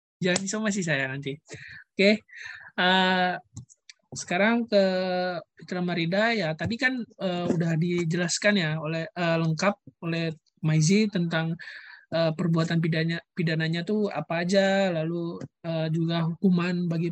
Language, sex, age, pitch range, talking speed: Indonesian, male, 20-39, 165-200 Hz, 125 wpm